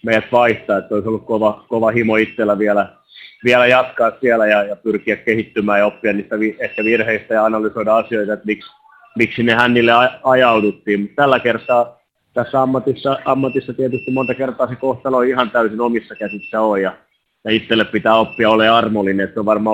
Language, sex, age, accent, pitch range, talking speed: Finnish, male, 30-49, native, 105-120 Hz, 175 wpm